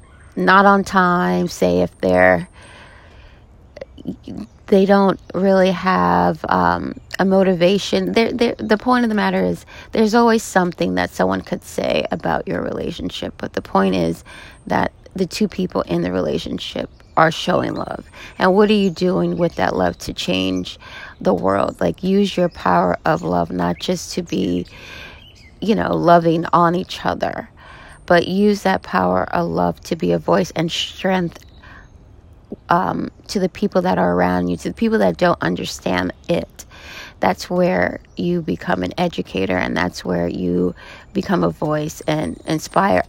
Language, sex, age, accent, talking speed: English, female, 30-49, American, 155 wpm